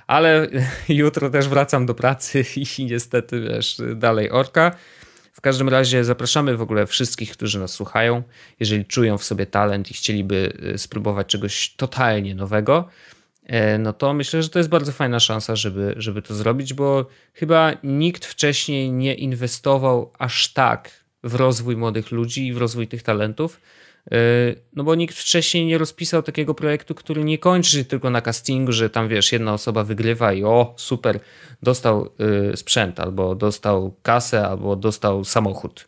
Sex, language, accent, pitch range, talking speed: male, Polish, native, 110-140 Hz, 155 wpm